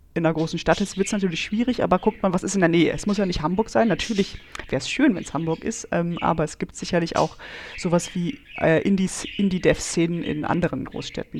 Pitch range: 160-190 Hz